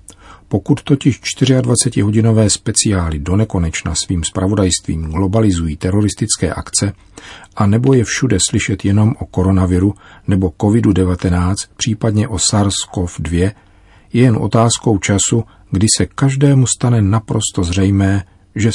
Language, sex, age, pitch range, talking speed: Czech, male, 40-59, 95-110 Hz, 110 wpm